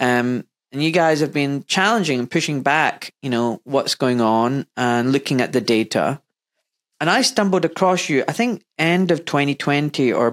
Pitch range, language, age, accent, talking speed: 125-180 Hz, English, 30-49, British, 180 wpm